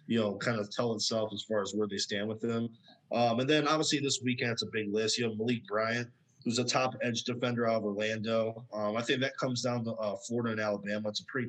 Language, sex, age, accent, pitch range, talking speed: English, male, 20-39, American, 110-130 Hz, 260 wpm